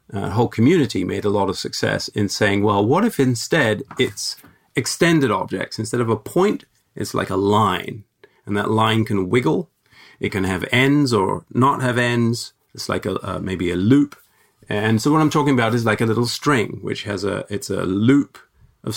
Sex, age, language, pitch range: male, 30-49, English, 105-130 Hz